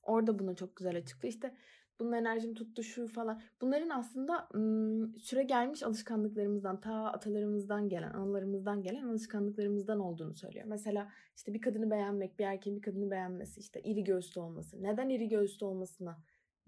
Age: 20-39